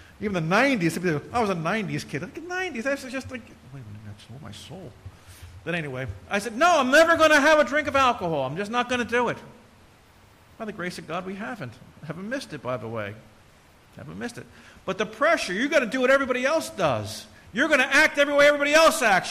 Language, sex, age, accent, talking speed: English, male, 50-69, American, 250 wpm